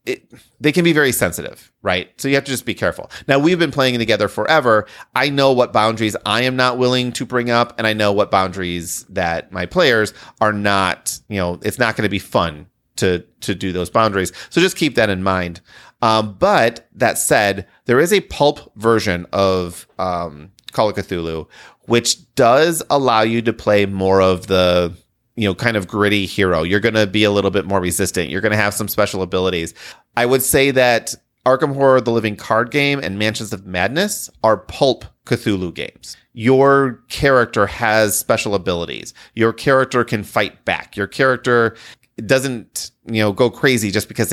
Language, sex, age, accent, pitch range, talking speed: English, male, 30-49, American, 95-125 Hz, 190 wpm